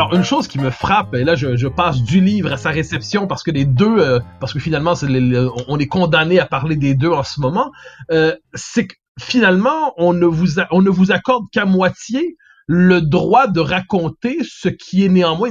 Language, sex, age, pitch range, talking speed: French, male, 30-49, 150-200 Hz, 230 wpm